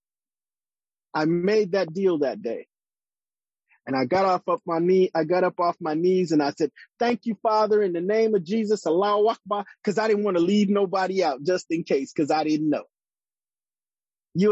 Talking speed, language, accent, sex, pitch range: 200 wpm, English, American, male, 165-205 Hz